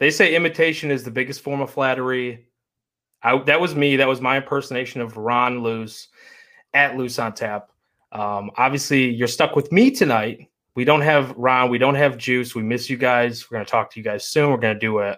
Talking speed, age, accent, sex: 220 wpm, 20-39, American, male